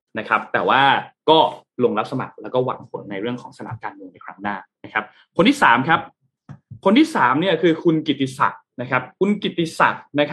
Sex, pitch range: male, 120-155 Hz